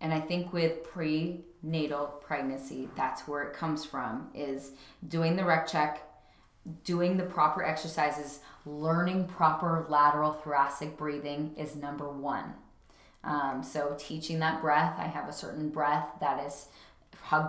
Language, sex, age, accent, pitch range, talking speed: English, female, 20-39, American, 150-165 Hz, 140 wpm